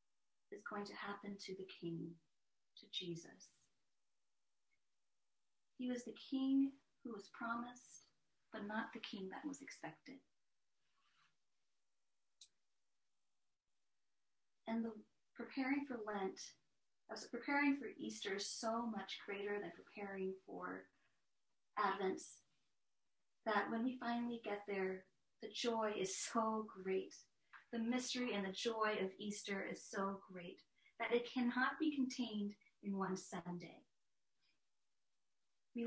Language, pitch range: English, 190-240 Hz